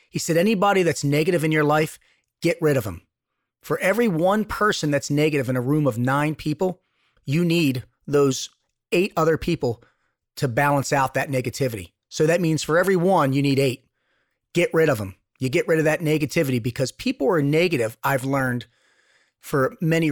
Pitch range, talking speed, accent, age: 135-175 Hz, 185 wpm, American, 30-49